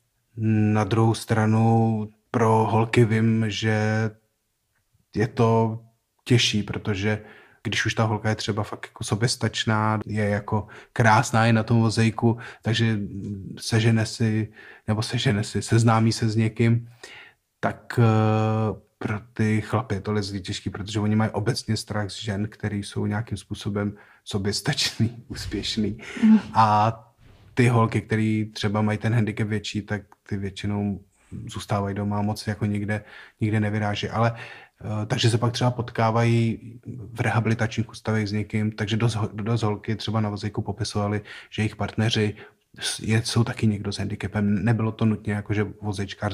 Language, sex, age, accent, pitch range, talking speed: Czech, male, 30-49, native, 105-115 Hz, 140 wpm